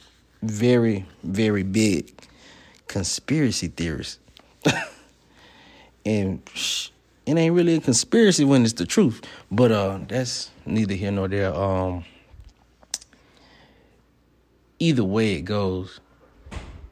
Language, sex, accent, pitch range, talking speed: English, male, American, 90-115 Hz, 95 wpm